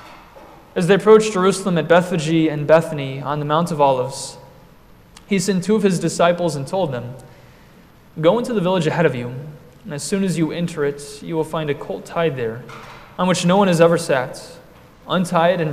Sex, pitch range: male, 140-170 Hz